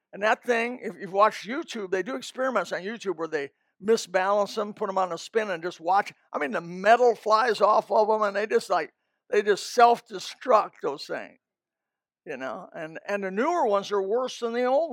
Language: English